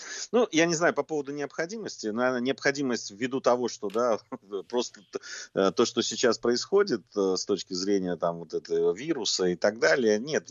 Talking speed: 170 wpm